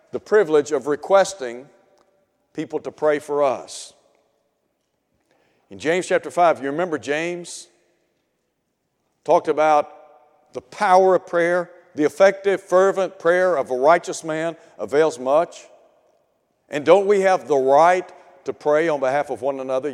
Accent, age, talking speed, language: American, 60-79, 135 wpm, English